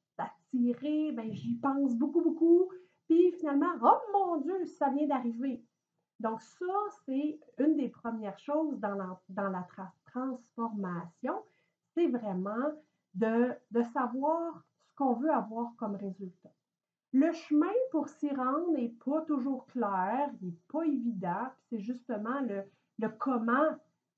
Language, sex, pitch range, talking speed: French, female, 215-290 Hz, 140 wpm